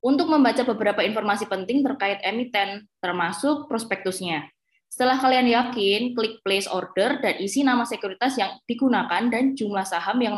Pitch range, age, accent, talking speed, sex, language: 245-320 Hz, 20-39, native, 145 wpm, female, Indonesian